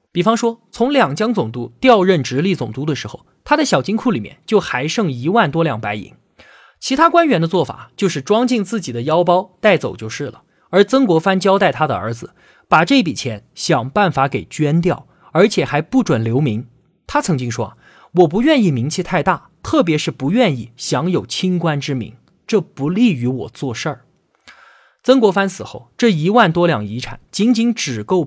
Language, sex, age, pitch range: Chinese, male, 20-39, 135-220 Hz